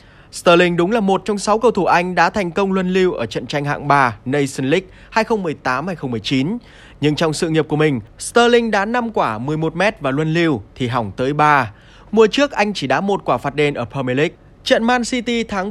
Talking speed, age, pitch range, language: 215 wpm, 20-39, 135-205 Hz, Vietnamese